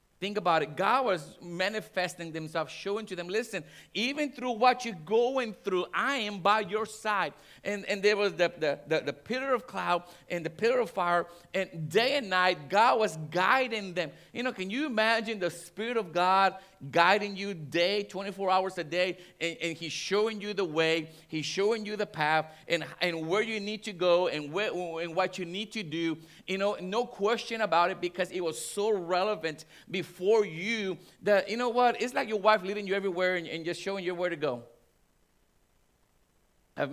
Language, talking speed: English, 200 wpm